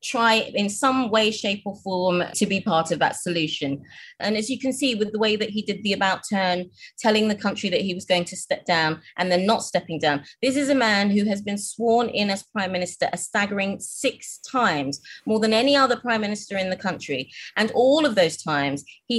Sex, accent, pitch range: female, British, 180-220 Hz